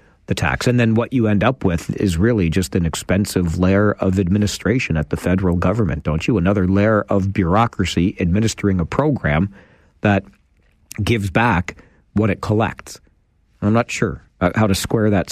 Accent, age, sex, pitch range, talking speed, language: American, 50-69, male, 90-110 Hz, 170 wpm, English